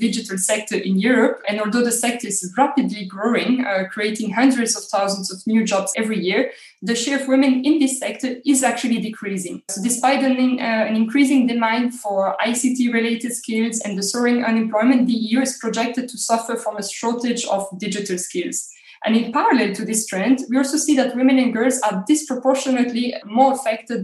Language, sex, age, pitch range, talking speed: English, female, 20-39, 210-255 Hz, 190 wpm